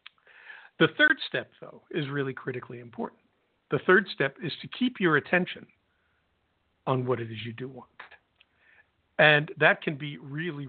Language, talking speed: English, 155 wpm